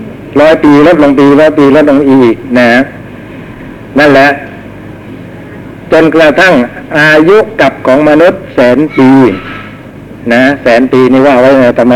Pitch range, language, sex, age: 115-140 Hz, Thai, male, 60-79